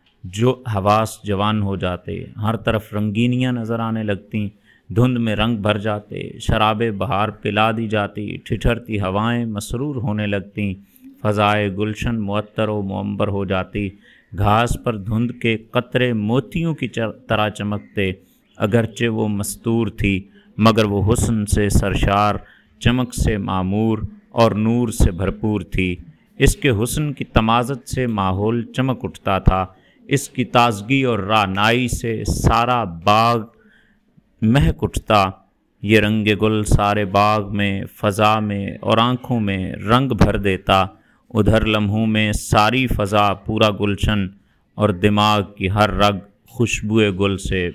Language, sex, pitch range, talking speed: Urdu, male, 100-115 Hz, 135 wpm